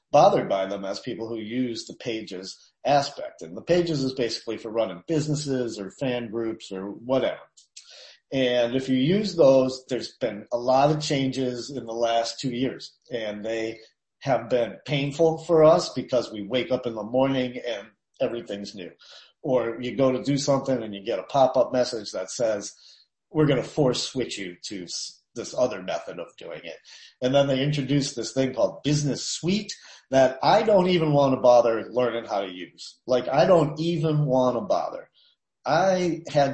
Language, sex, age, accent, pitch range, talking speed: English, male, 40-59, American, 115-145 Hz, 185 wpm